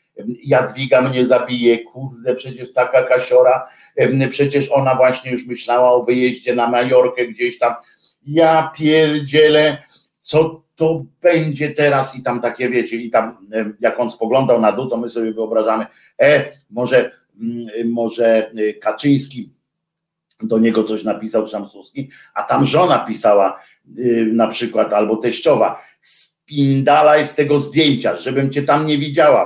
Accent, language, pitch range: native, Polish, 125-155 Hz